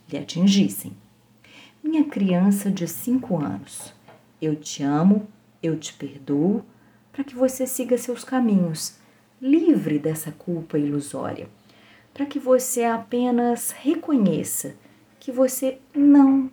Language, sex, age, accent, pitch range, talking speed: Portuguese, female, 40-59, Brazilian, 155-245 Hz, 110 wpm